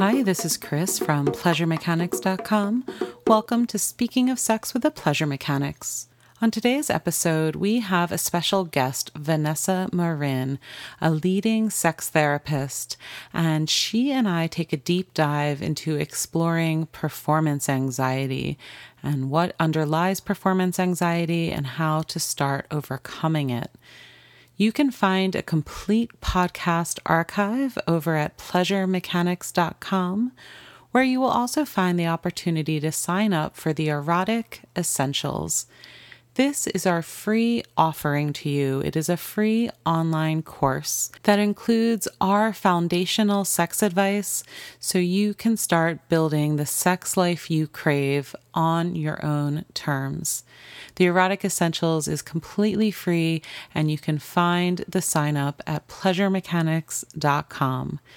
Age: 30-49